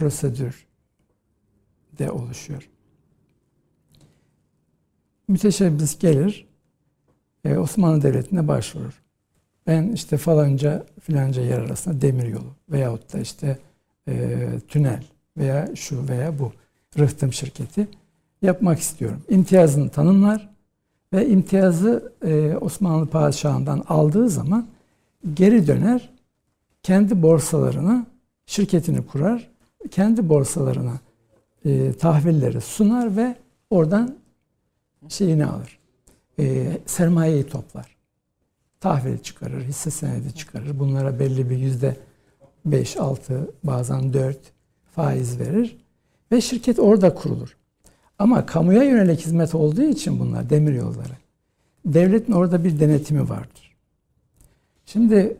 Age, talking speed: 60-79, 90 wpm